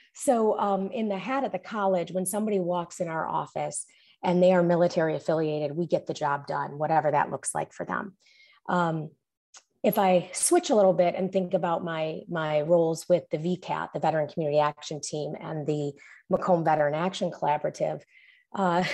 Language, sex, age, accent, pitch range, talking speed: English, female, 30-49, American, 175-210 Hz, 185 wpm